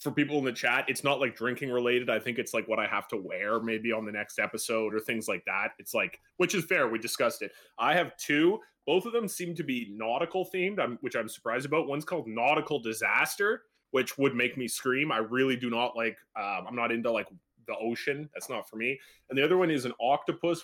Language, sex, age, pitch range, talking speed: English, male, 20-39, 120-180 Hz, 240 wpm